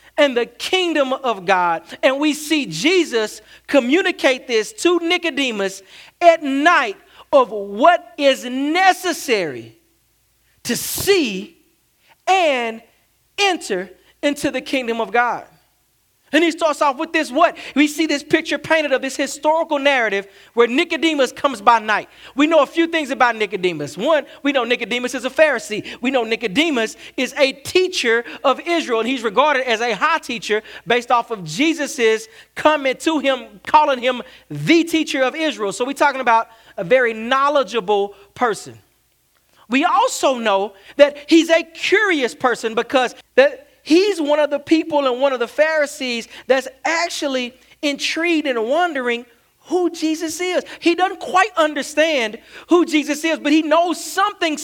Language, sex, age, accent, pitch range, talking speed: English, male, 40-59, American, 230-315 Hz, 150 wpm